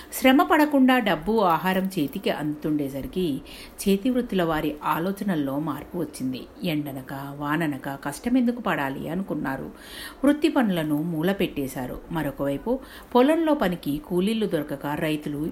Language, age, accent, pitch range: Telugu, 50-69, native, 145-230 Hz